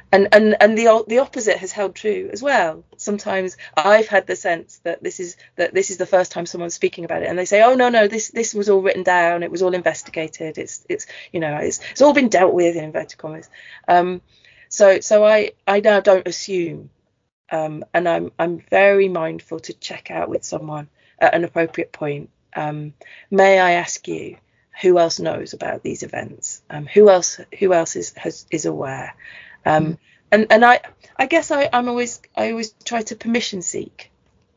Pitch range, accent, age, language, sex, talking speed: 170-210 Hz, British, 30-49, English, female, 200 wpm